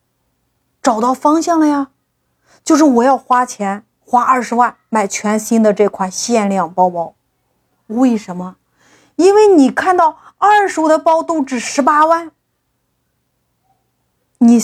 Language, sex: Chinese, female